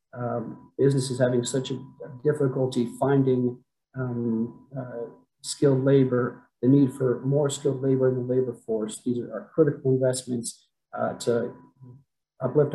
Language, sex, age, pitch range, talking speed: English, male, 40-59, 120-135 Hz, 135 wpm